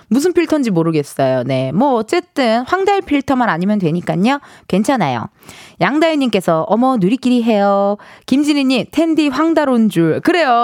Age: 20-39